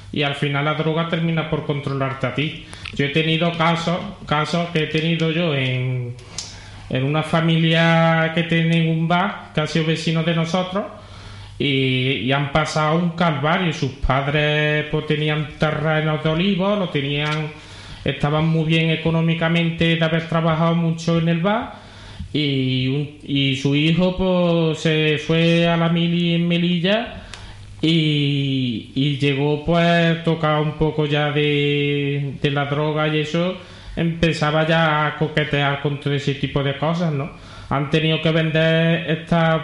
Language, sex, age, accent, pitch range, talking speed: Spanish, male, 30-49, Spanish, 145-165 Hz, 155 wpm